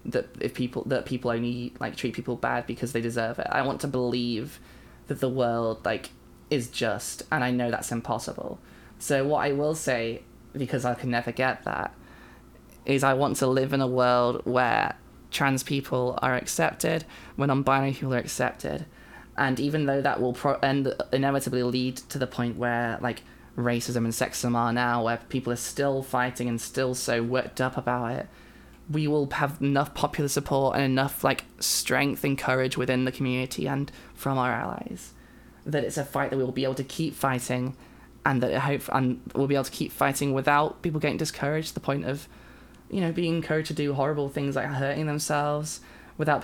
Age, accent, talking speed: 20-39, British, 195 wpm